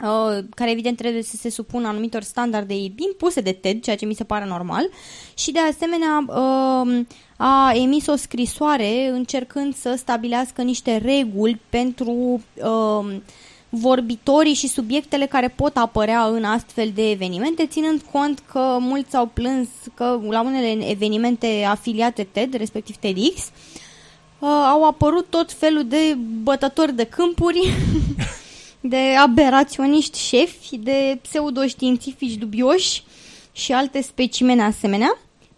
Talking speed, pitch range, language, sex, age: 120 wpm, 220-275 Hz, English, female, 20-39